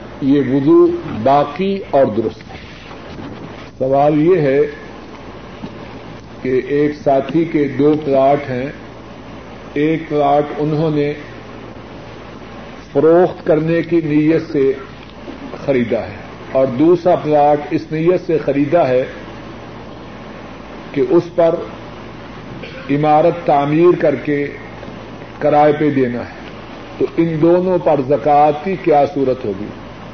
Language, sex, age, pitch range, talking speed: Urdu, male, 50-69, 135-170 Hz, 110 wpm